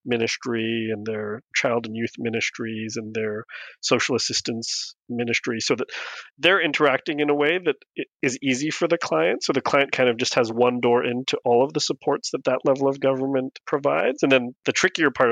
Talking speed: 195 wpm